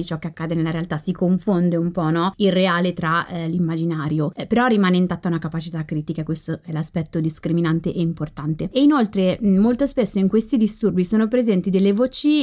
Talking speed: 190 wpm